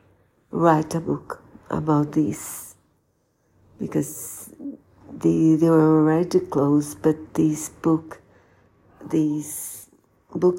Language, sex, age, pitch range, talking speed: Portuguese, female, 50-69, 115-170 Hz, 90 wpm